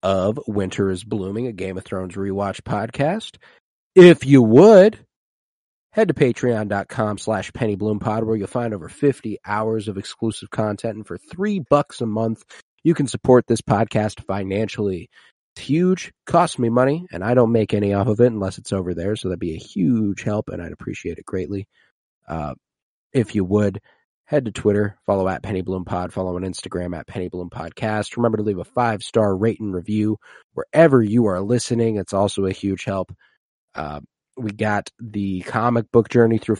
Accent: American